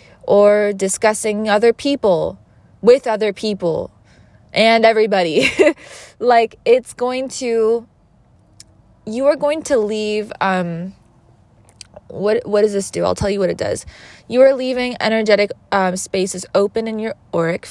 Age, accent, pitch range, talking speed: 20-39, American, 185-230 Hz, 135 wpm